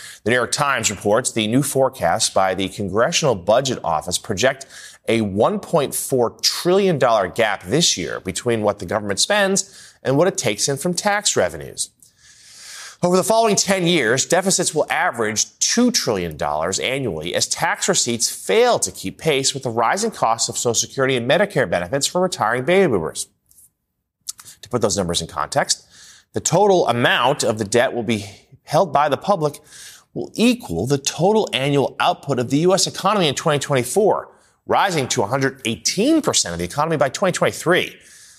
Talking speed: 160 wpm